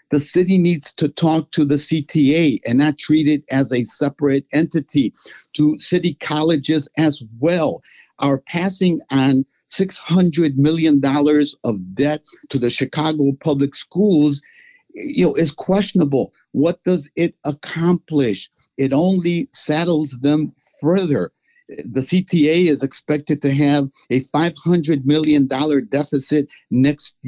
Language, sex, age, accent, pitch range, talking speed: English, male, 50-69, American, 140-160 Hz, 120 wpm